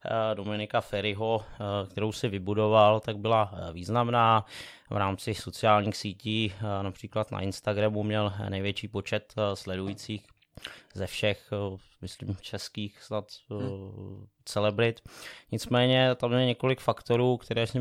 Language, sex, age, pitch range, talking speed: Czech, male, 20-39, 100-115 Hz, 110 wpm